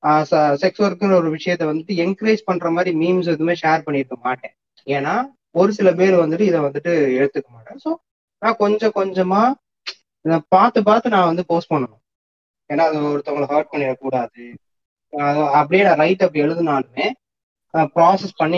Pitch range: 145-185 Hz